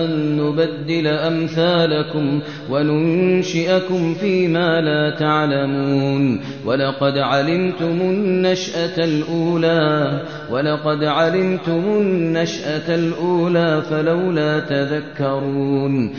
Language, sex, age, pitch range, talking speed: Arabic, male, 30-49, 150-170 Hz, 60 wpm